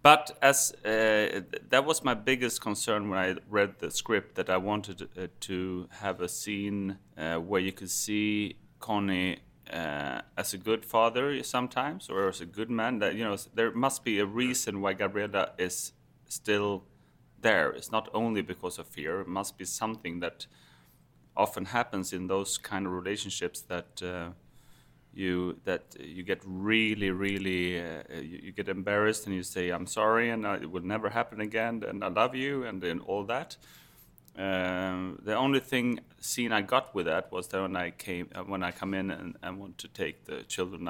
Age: 30-49